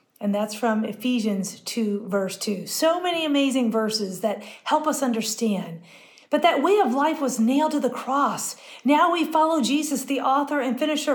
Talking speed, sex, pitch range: 180 wpm, female, 205-275 Hz